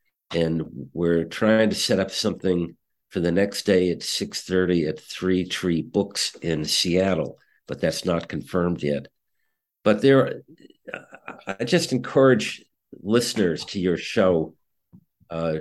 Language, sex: English, male